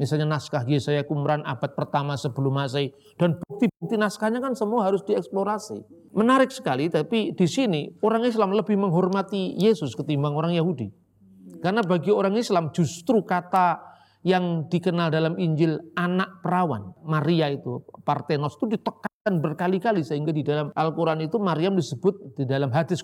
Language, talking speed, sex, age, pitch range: Indonesian, 145 wpm, male, 40-59, 145-195 Hz